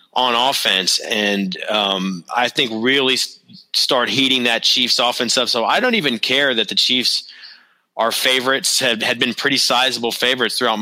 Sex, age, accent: male, 30-49, American